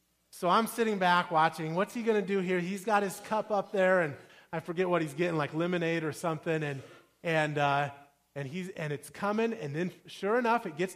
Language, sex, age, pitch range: English, male, 30-49, 180-240 Hz